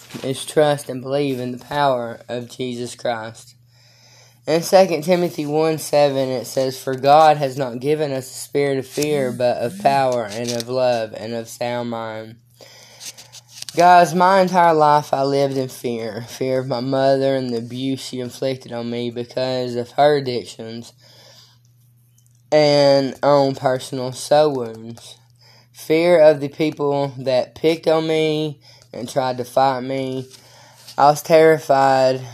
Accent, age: American, 10-29